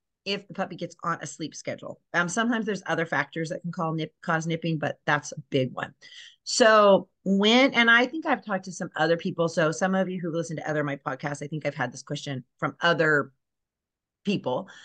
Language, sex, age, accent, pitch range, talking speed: English, female, 30-49, American, 155-215 Hz, 220 wpm